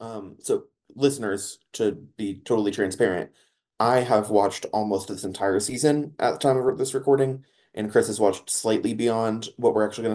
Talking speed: 175 wpm